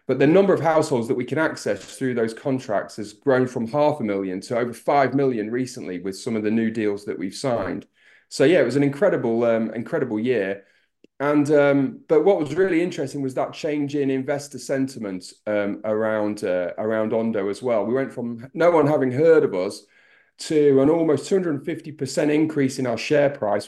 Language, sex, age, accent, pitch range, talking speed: English, male, 30-49, British, 115-145 Hz, 205 wpm